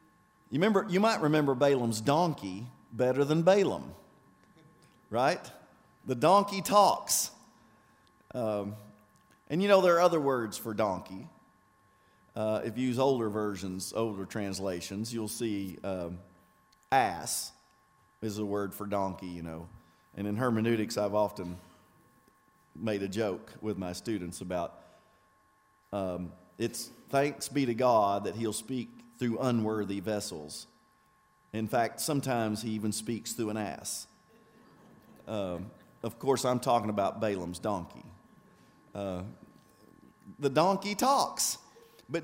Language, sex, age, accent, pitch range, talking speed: English, male, 40-59, American, 105-145 Hz, 125 wpm